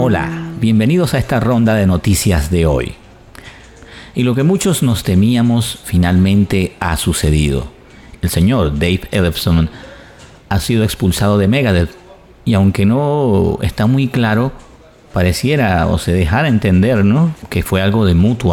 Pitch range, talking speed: 85-110 Hz, 145 wpm